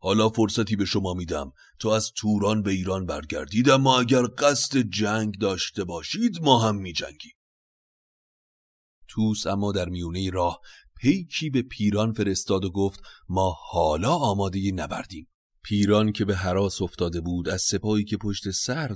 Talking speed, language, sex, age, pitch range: 150 wpm, Persian, male, 30-49, 95-135 Hz